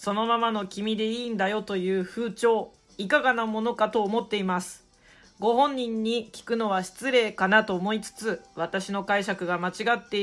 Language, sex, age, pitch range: Japanese, female, 40-59, 185-235 Hz